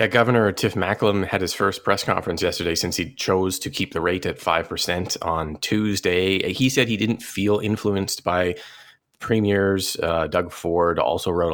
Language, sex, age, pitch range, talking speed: English, male, 30-49, 90-105 Hz, 175 wpm